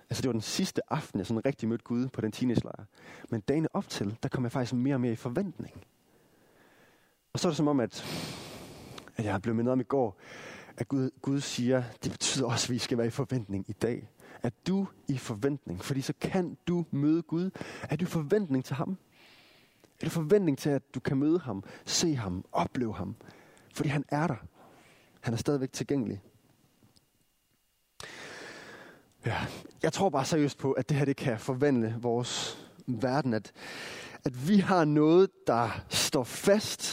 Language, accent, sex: Danish, native, male